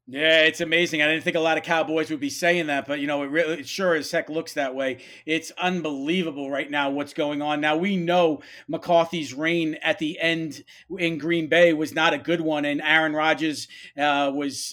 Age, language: 40-59, English